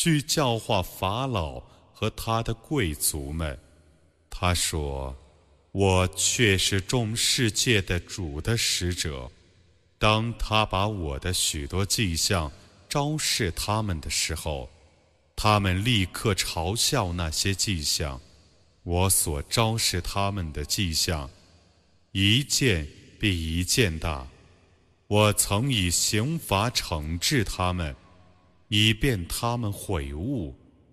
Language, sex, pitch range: Arabic, male, 85-110 Hz